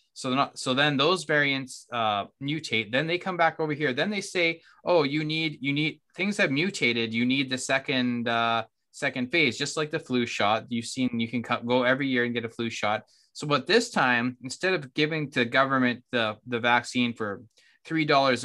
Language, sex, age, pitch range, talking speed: English, male, 20-39, 120-155 Hz, 210 wpm